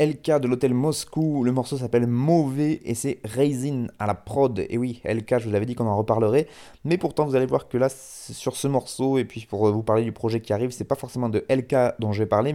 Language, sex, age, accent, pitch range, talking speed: French, male, 20-39, French, 105-130 Hz, 260 wpm